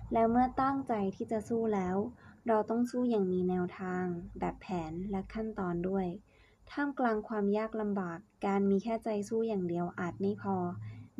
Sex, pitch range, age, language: female, 180-215 Hz, 20-39, Thai